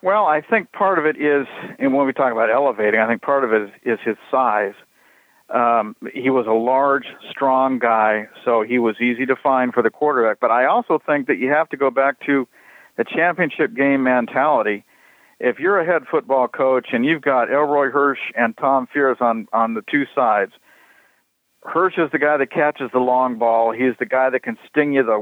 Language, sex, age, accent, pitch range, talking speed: English, male, 50-69, American, 120-150 Hz, 210 wpm